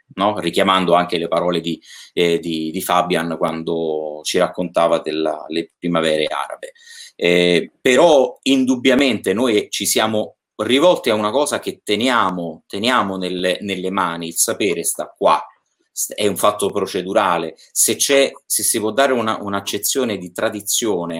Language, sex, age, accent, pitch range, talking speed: Italian, male, 30-49, native, 85-110 Hz, 125 wpm